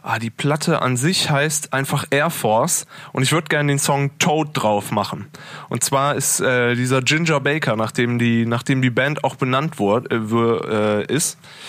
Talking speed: 170 wpm